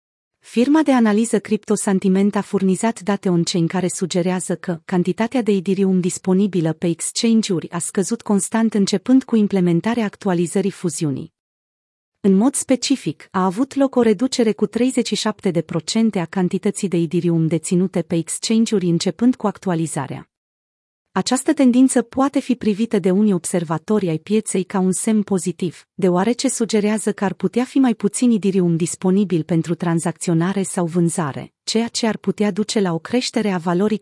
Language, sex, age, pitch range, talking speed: Romanian, female, 40-59, 180-220 Hz, 150 wpm